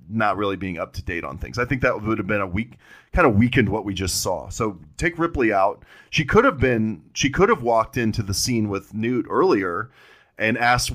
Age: 30-49